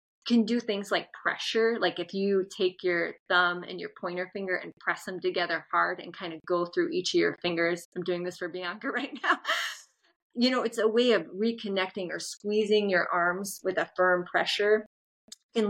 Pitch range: 180-230 Hz